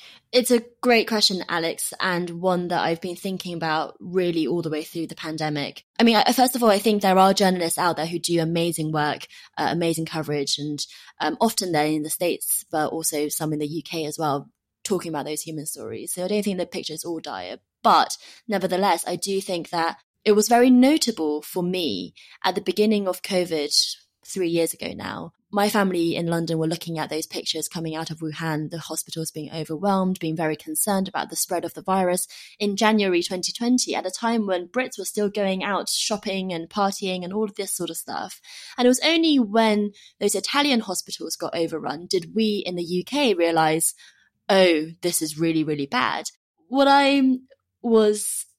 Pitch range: 160-205 Hz